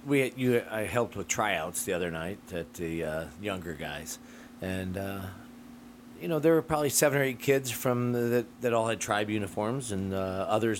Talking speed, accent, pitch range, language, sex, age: 200 wpm, American, 100-125 Hz, English, male, 40-59